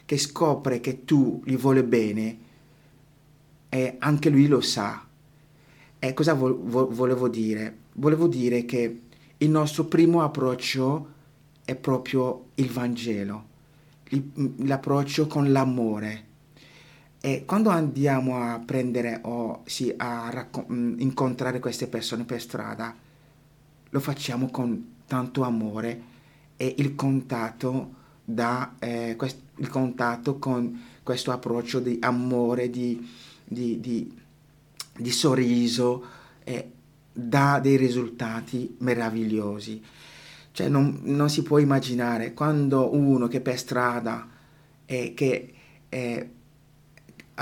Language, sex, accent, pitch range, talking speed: Italian, male, native, 120-145 Hz, 115 wpm